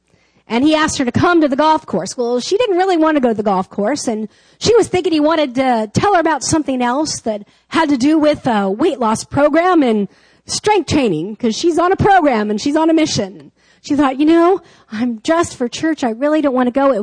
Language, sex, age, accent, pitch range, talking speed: English, female, 40-59, American, 235-330 Hz, 245 wpm